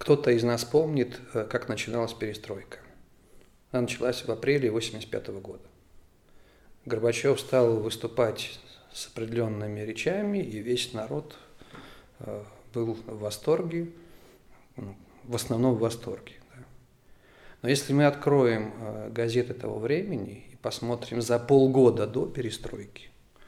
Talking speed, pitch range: 105 wpm, 110-130 Hz